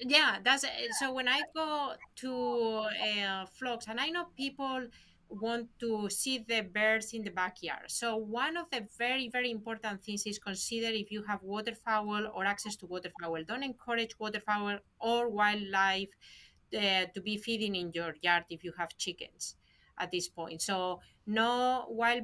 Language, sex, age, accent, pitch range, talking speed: English, female, 30-49, Spanish, 200-240 Hz, 165 wpm